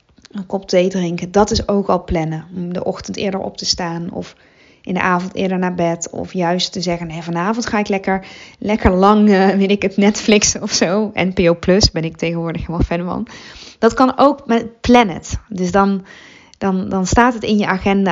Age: 20-39